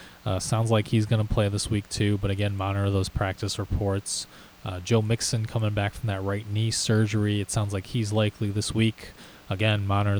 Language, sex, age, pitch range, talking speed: English, male, 20-39, 100-110 Hz, 205 wpm